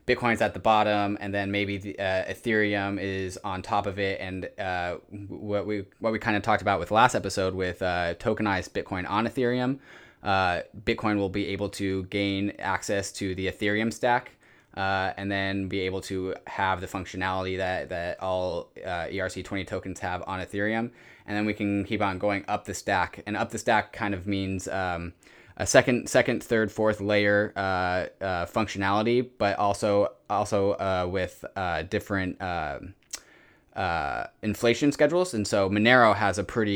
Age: 20-39